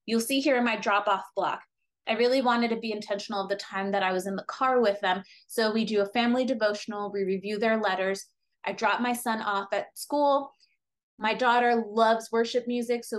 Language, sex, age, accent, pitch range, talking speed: English, female, 20-39, American, 200-245 Hz, 215 wpm